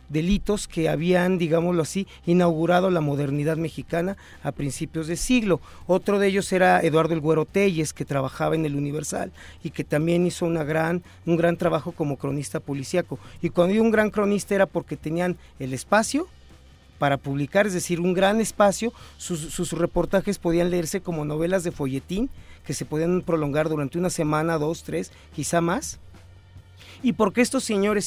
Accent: Mexican